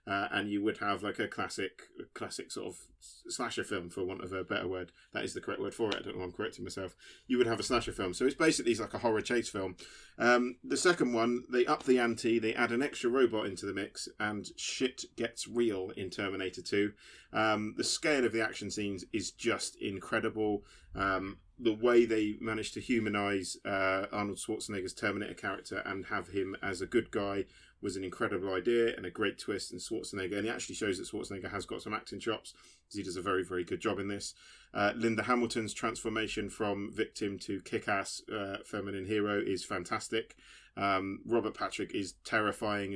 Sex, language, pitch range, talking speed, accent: male, English, 100-120 Hz, 205 wpm, British